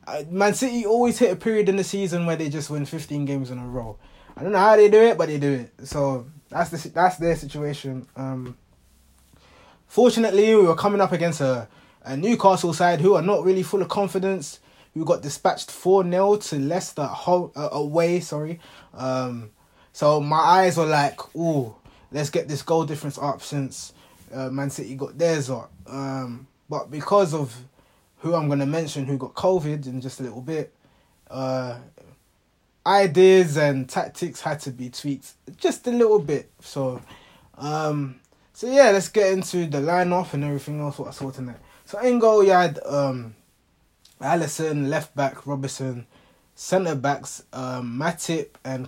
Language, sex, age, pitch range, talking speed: English, male, 20-39, 135-175 Hz, 175 wpm